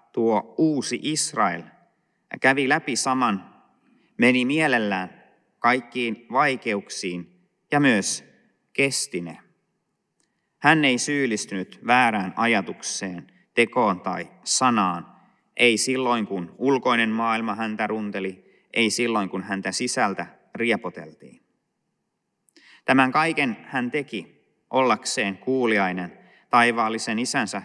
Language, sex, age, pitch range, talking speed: Finnish, male, 30-49, 105-130 Hz, 95 wpm